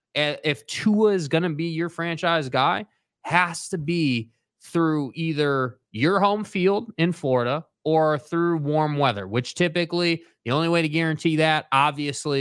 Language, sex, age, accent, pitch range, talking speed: English, male, 20-39, American, 135-180 Hz, 155 wpm